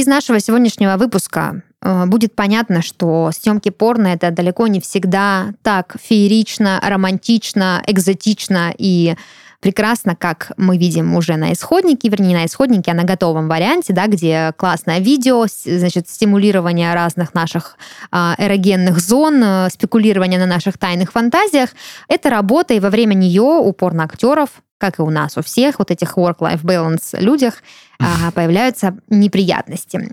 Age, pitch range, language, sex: 20-39, 175-230 Hz, Russian, female